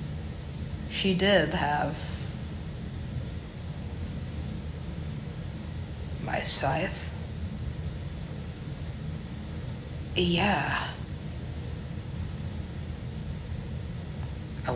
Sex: female